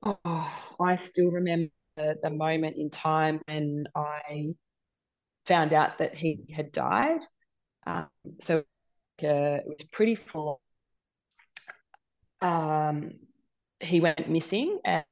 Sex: female